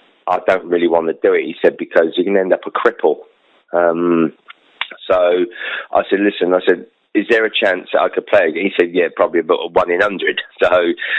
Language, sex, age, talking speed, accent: English, male, 30-49, 220 wpm, British